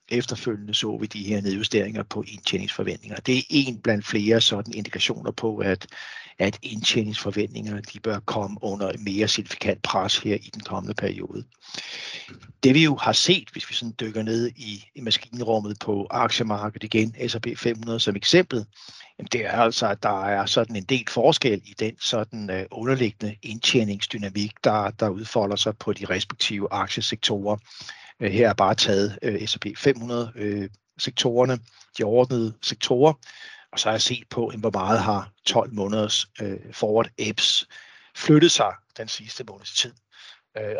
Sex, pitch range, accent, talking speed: male, 105-120 Hz, native, 155 wpm